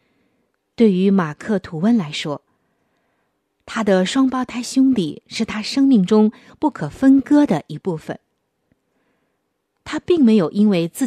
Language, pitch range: Chinese, 165-240 Hz